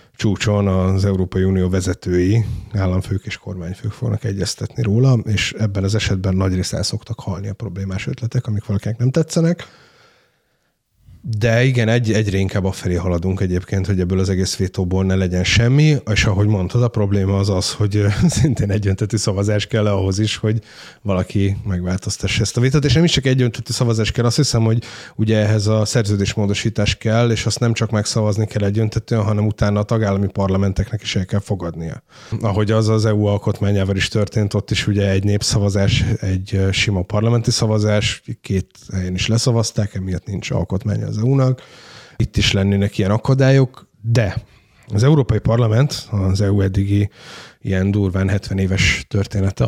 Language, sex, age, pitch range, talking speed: Hungarian, male, 30-49, 95-115 Hz, 165 wpm